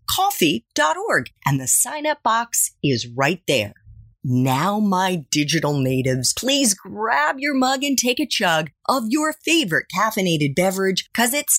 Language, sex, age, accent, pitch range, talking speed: English, female, 30-49, American, 145-245 Hz, 140 wpm